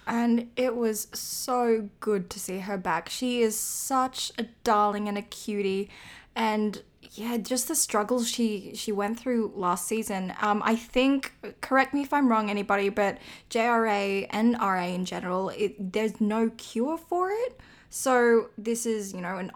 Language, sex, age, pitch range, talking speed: English, female, 10-29, 205-245 Hz, 165 wpm